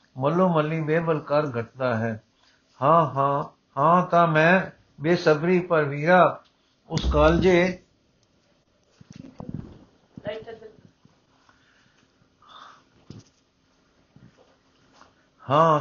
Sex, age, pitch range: male, 60-79, 140-170 Hz